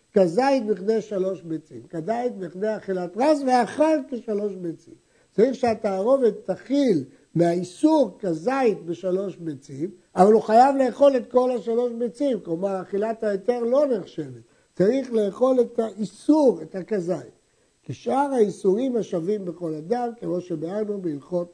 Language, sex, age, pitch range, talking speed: Hebrew, male, 60-79, 180-240 Hz, 125 wpm